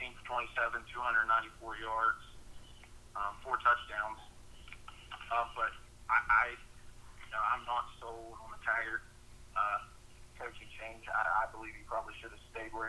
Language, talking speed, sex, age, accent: English, 165 wpm, male, 30-49, American